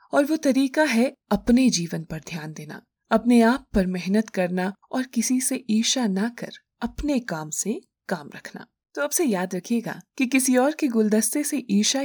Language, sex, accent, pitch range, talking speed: Hindi, female, native, 185-240 Hz, 180 wpm